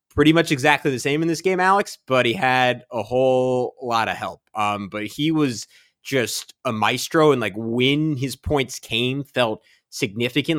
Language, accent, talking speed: English, American, 180 wpm